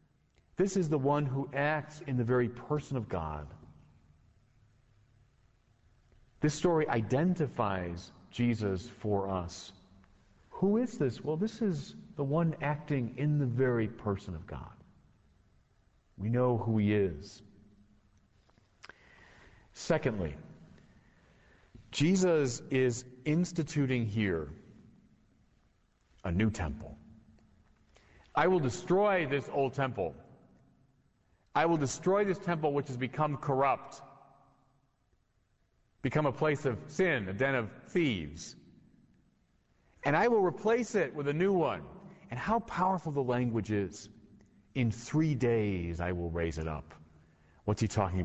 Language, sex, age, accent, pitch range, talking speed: English, male, 40-59, American, 100-150 Hz, 120 wpm